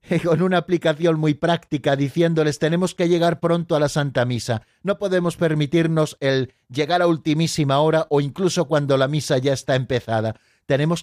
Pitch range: 140-185 Hz